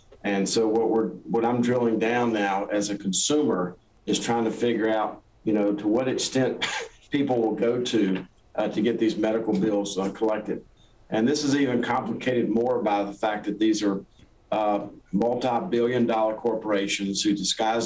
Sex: male